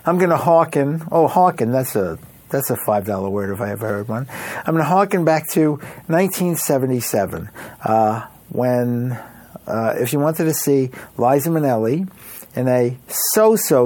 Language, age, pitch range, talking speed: English, 60-79, 120-155 Hz, 160 wpm